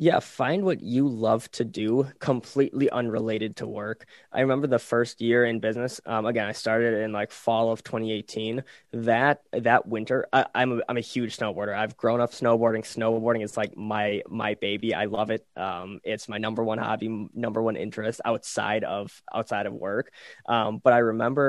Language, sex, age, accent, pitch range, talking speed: English, male, 20-39, American, 110-120 Hz, 190 wpm